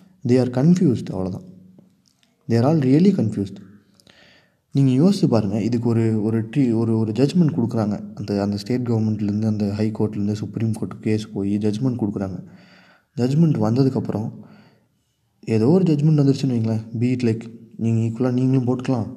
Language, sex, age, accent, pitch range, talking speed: Tamil, male, 20-39, native, 105-125 Hz, 140 wpm